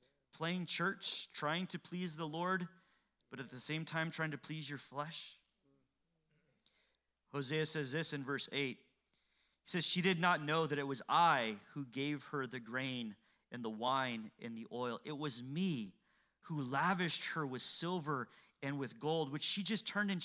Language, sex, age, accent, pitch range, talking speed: English, male, 30-49, American, 145-205 Hz, 180 wpm